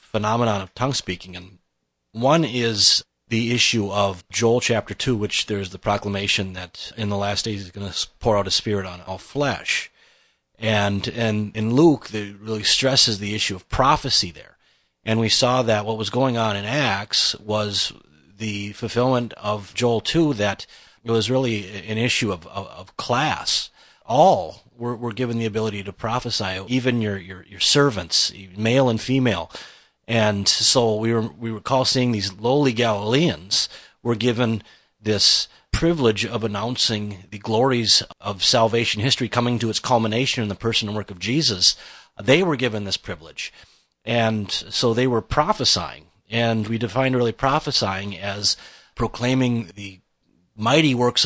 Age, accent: 30-49, American